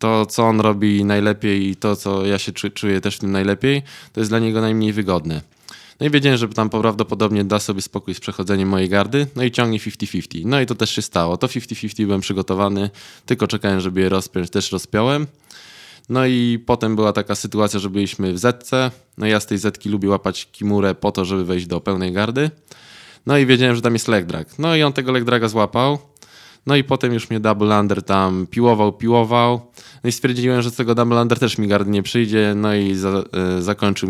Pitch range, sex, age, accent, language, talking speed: 95-115 Hz, male, 20-39, native, Polish, 210 wpm